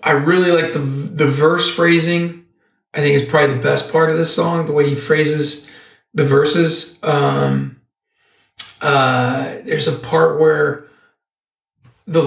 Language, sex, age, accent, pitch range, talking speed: English, male, 40-59, American, 145-170 Hz, 145 wpm